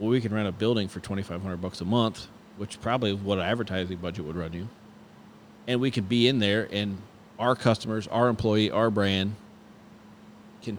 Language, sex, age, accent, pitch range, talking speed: English, male, 30-49, American, 100-120 Hz, 195 wpm